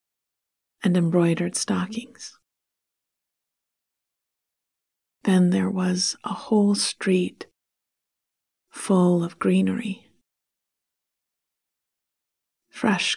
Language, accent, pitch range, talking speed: English, American, 175-205 Hz, 60 wpm